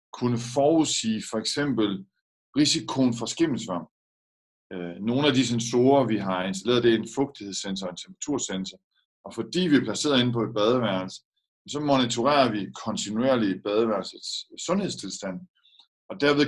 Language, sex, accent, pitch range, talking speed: Danish, male, native, 110-130 Hz, 140 wpm